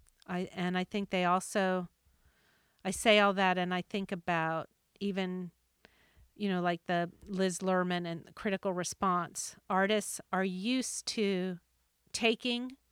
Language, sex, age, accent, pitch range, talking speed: English, female, 40-59, American, 175-200 Hz, 140 wpm